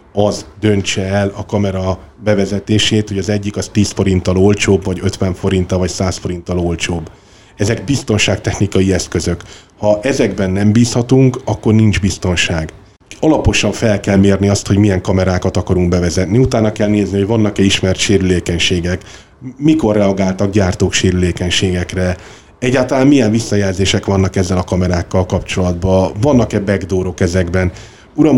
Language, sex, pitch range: Hungarian, male, 95-105 Hz